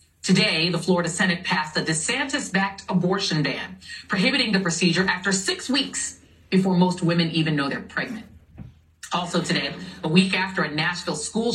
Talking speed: 160 wpm